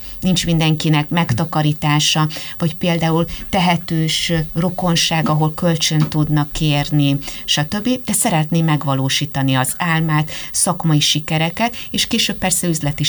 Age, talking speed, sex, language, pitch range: 30-49, 105 wpm, female, Hungarian, 135-175 Hz